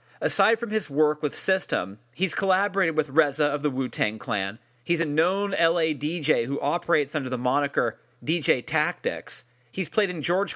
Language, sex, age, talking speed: English, male, 40-59, 170 wpm